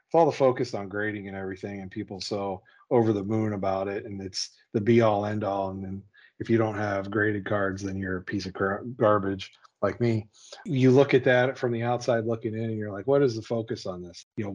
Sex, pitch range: male, 95-115 Hz